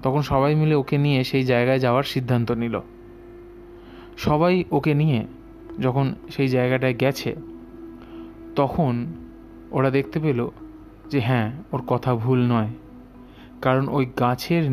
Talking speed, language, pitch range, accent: 120 wpm, Bengali, 115-135 Hz, native